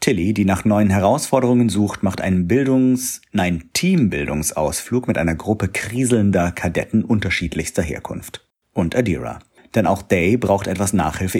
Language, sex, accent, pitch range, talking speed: German, male, German, 90-115 Hz, 135 wpm